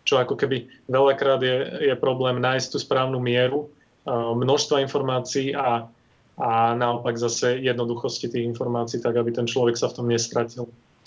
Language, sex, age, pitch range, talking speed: Slovak, male, 30-49, 120-130 Hz, 150 wpm